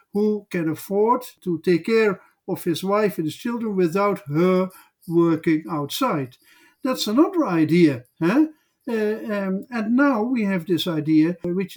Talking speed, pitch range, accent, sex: 150 wpm, 165-210 Hz, Dutch, male